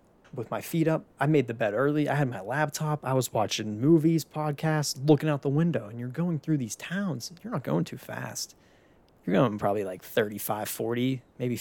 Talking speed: 205 wpm